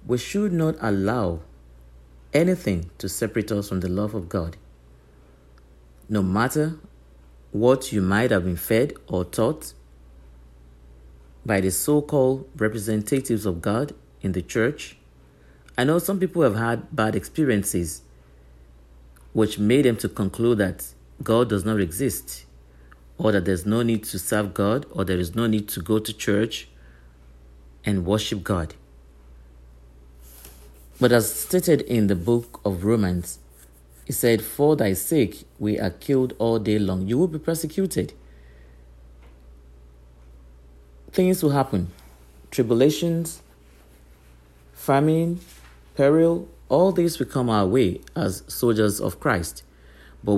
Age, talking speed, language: 50-69, 130 wpm, English